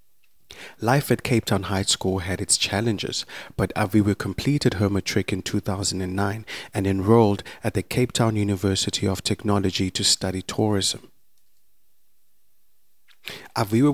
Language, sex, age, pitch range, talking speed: English, male, 30-49, 95-110 Hz, 125 wpm